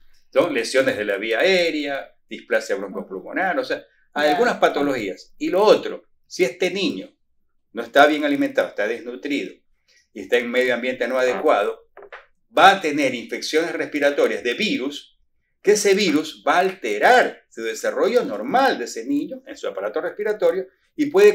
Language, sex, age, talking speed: Spanish, male, 50-69, 165 wpm